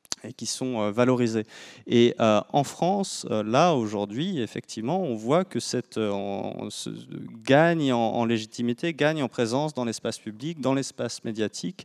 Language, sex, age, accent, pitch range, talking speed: French, male, 30-49, French, 105-125 Hz, 150 wpm